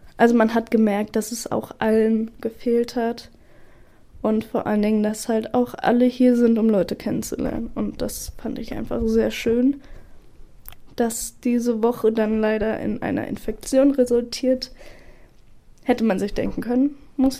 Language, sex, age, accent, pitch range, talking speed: German, female, 10-29, German, 220-245 Hz, 155 wpm